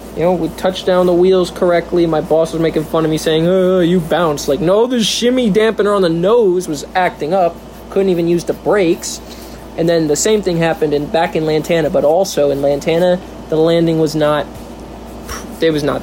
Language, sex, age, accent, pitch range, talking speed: English, male, 20-39, American, 165-210 Hz, 210 wpm